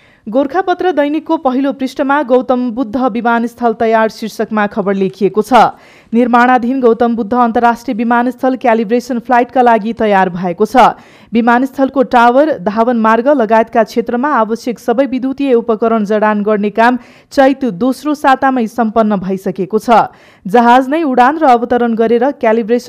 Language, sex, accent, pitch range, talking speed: English, female, Indian, 225-260 Hz, 115 wpm